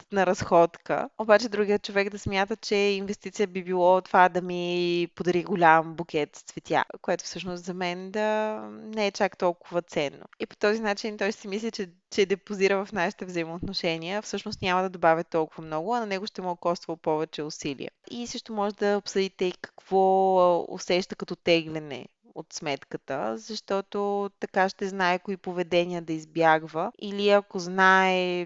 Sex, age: female, 20-39